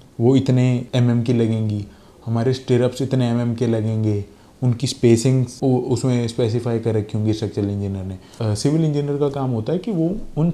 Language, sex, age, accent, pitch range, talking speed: Hindi, male, 20-39, native, 110-145 Hz, 175 wpm